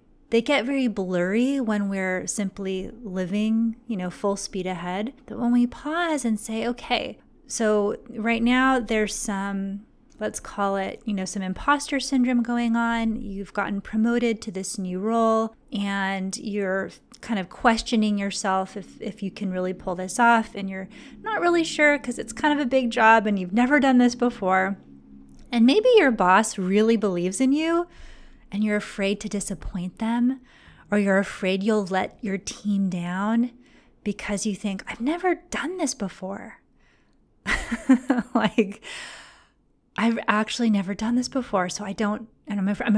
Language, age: English, 30-49